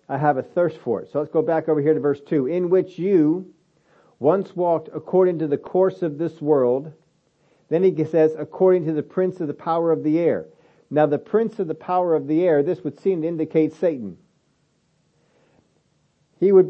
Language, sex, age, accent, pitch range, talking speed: English, male, 50-69, American, 150-180 Hz, 205 wpm